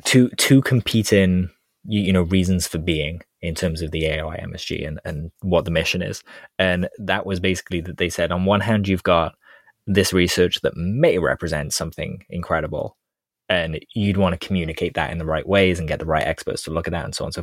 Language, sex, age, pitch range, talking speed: English, male, 20-39, 85-105 Hz, 225 wpm